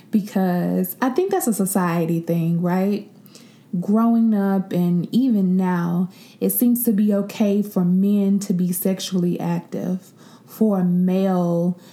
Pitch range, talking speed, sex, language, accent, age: 185-220 Hz, 135 wpm, female, English, American, 20-39